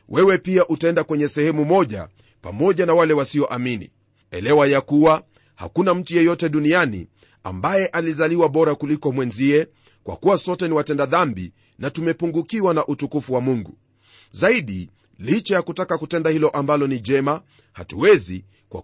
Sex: male